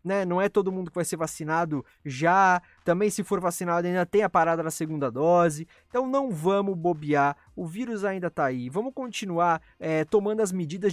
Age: 20-39